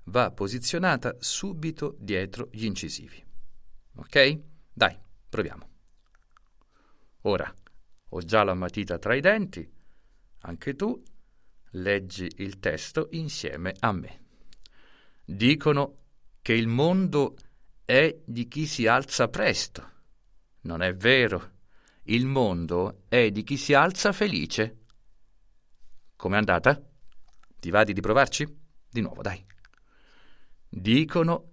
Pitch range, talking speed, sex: 90-140 Hz, 110 wpm, male